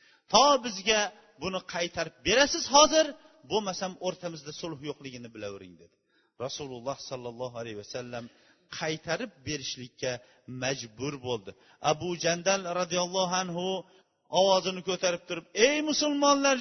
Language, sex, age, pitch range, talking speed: Bulgarian, male, 40-59, 175-240 Hz, 115 wpm